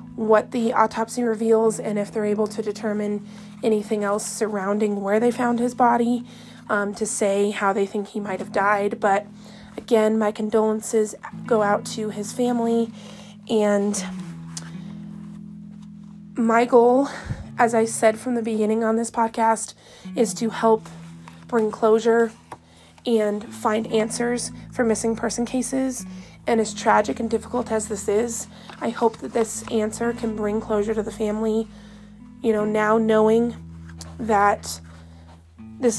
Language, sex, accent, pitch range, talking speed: English, female, American, 205-230 Hz, 145 wpm